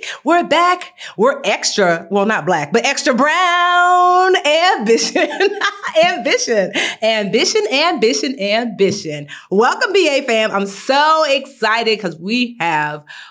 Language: English